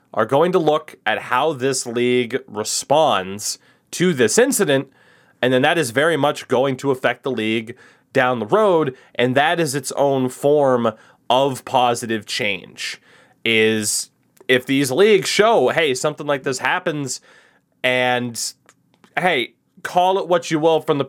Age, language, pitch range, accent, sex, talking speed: 20-39, English, 120-160 Hz, American, male, 155 wpm